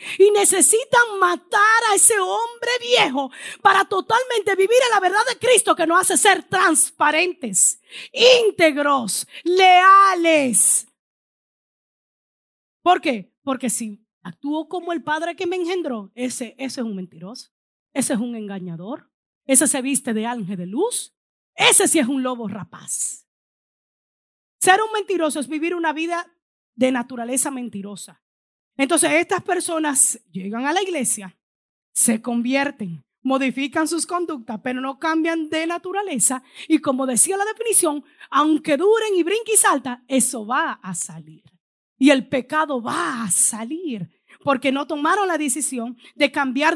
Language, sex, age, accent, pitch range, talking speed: Spanish, female, 30-49, American, 245-360 Hz, 140 wpm